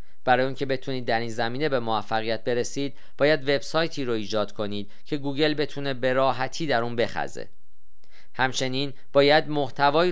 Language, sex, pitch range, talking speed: Persian, male, 115-140 Hz, 150 wpm